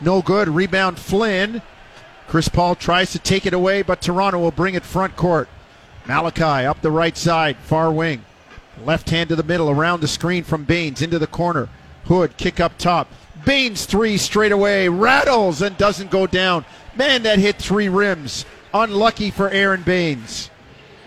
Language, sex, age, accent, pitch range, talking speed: English, male, 50-69, American, 160-190 Hz, 170 wpm